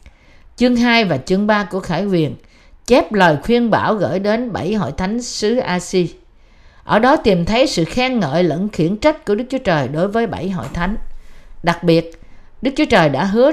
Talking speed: 200 wpm